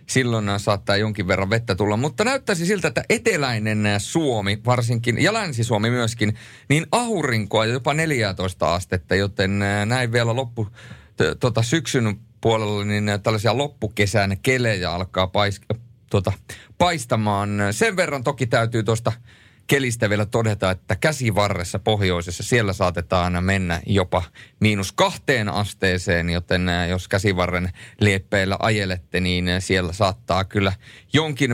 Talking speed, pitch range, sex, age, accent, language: 120 wpm, 95-125 Hz, male, 30-49, native, Finnish